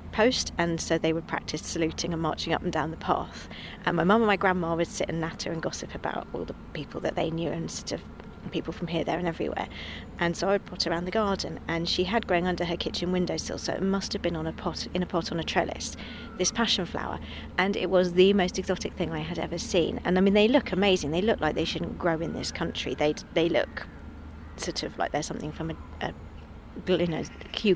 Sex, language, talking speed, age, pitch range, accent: female, English, 250 wpm, 40-59, 165-200 Hz, British